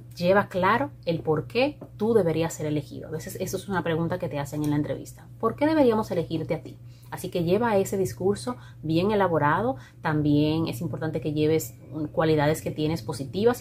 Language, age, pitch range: Spanish, 30-49, 145-185 Hz